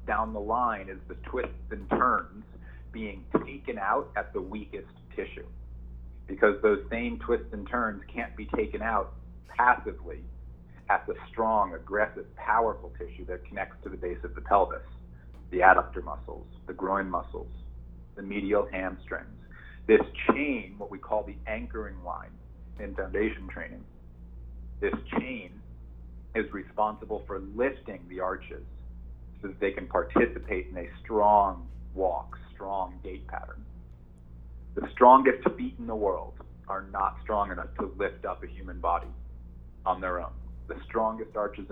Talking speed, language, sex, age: 145 wpm, English, male, 40-59